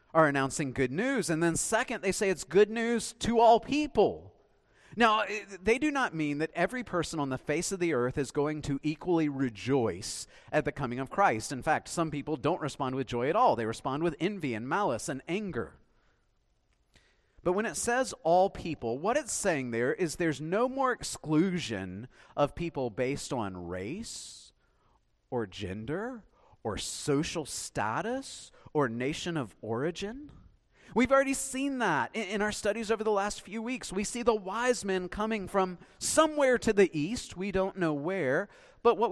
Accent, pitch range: American, 155-250 Hz